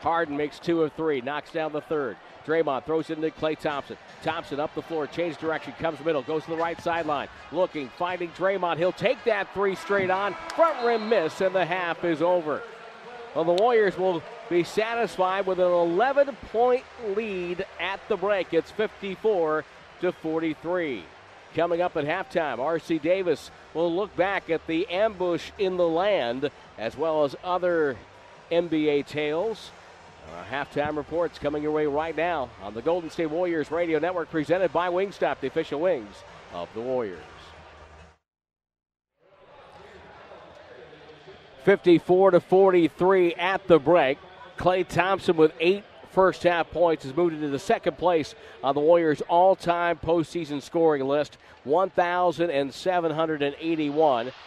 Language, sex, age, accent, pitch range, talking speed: English, male, 50-69, American, 150-180 Hz, 150 wpm